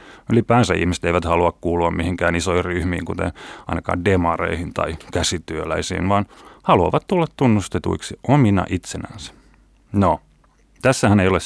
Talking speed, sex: 120 wpm, male